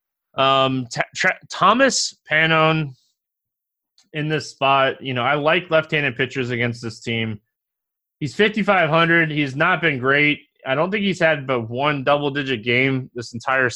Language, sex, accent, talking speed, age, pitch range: English, male, American, 155 wpm, 20-39, 120-150 Hz